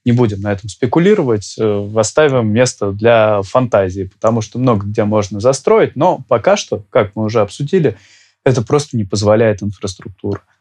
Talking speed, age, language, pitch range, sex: 155 wpm, 20-39, Russian, 105-130 Hz, male